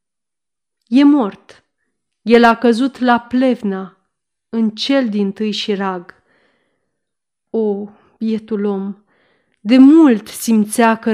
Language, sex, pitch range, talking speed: Romanian, female, 205-255 Hz, 110 wpm